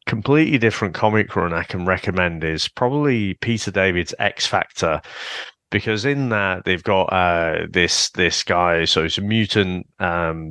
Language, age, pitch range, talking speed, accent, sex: English, 30-49, 95-115 Hz, 155 wpm, British, male